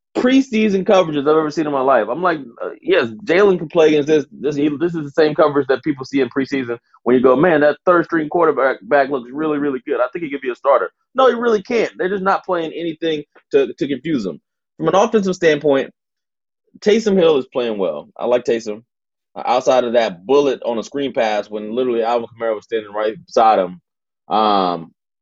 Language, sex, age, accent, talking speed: English, male, 20-39, American, 215 wpm